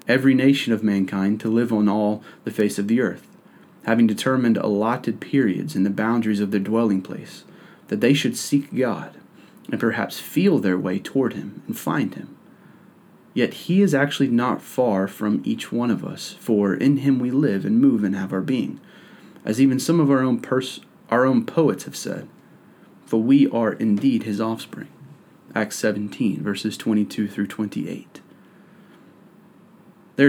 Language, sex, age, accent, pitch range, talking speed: English, male, 30-49, American, 105-140 Hz, 170 wpm